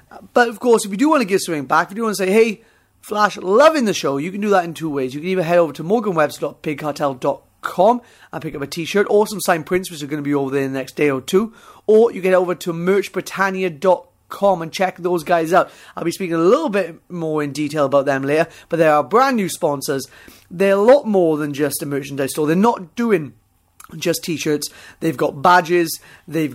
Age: 30-49